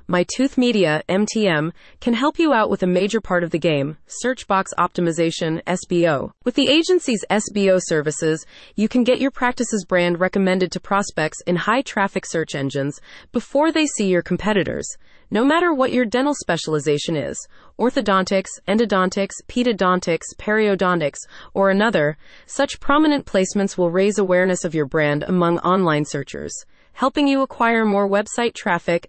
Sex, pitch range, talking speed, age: female, 170-235 Hz, 150 wpm, 30-49